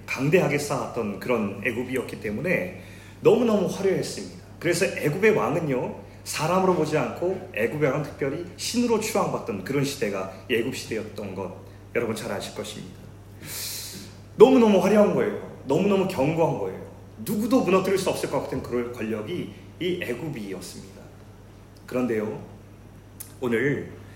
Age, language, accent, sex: 30-49, Korean, native, male